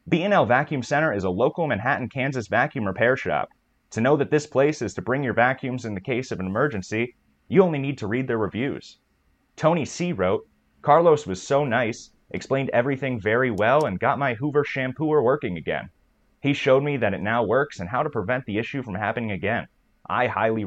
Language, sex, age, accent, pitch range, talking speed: English, male, 30-49, American, 110-145 Hz, 205 wpm